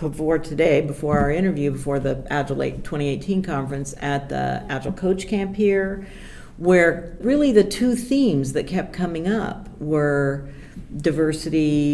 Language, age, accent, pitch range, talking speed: English, 50-69, American, 155-200 Hz, 135 wpm